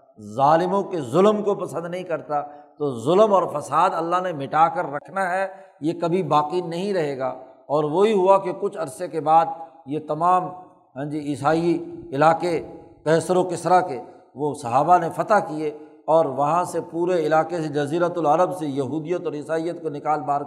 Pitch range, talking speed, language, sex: 150-180 Hz, 180 wpm, Urdu, male